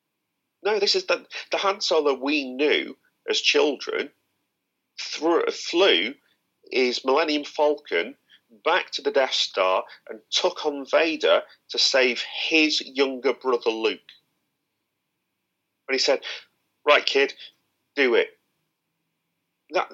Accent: British